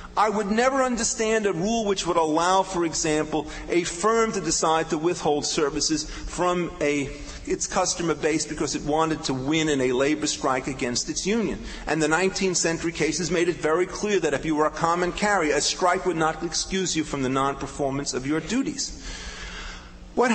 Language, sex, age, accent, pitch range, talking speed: English, male, 40-59, American, 150-195 Hz, 185 wpm